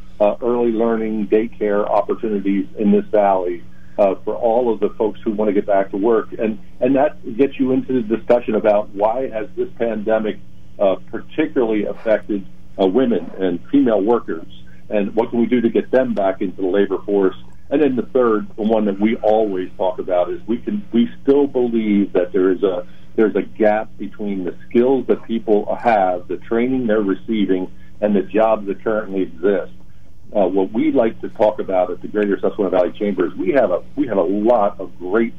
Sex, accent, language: male, American, English